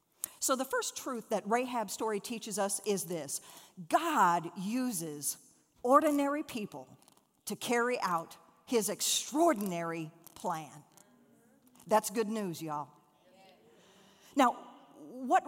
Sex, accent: female, American